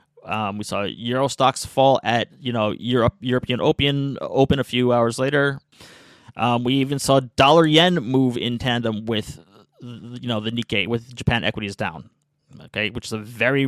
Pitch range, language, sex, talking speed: 120-150 Hz, English, male, 175 wpm